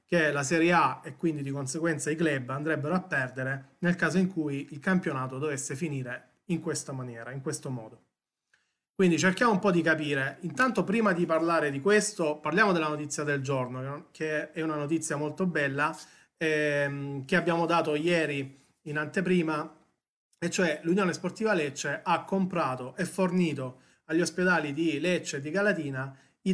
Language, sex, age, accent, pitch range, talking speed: Italian, male, 30-49, native, 140-175 Hz, 165 wpm